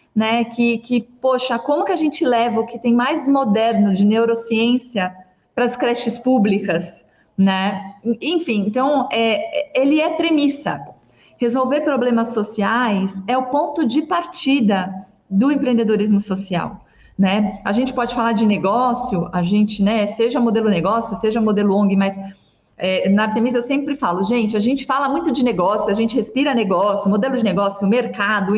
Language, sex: Portuguese, female